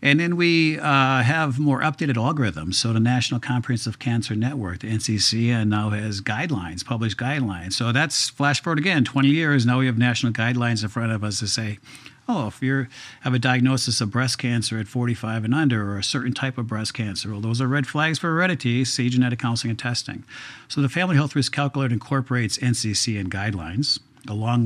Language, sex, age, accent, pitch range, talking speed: English, male, 50-69, American, 110-130 Hz, 195 wpm